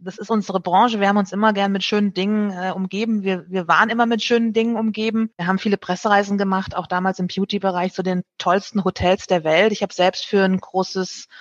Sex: female